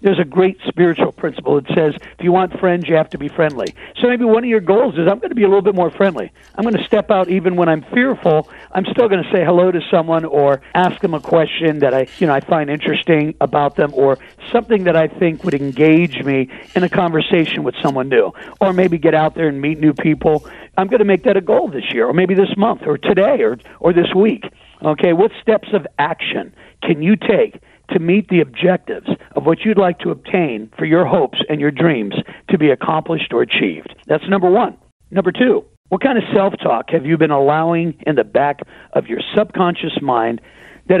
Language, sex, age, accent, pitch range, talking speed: English, male, 60-79, American, 160-195 Hz, 225 wpm